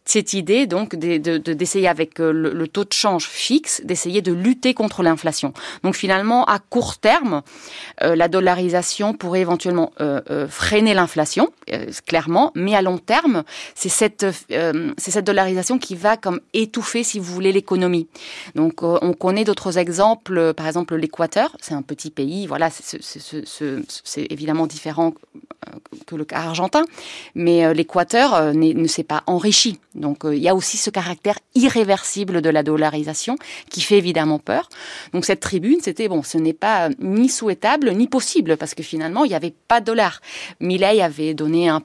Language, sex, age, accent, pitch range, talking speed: French, female, 30-49, French, 160-205 Hz, 185 wpm